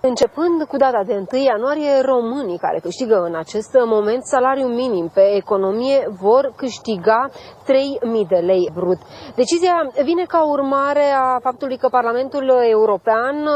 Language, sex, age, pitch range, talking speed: Romanian, female, 30-49, 225-285 Hz, 135 wpm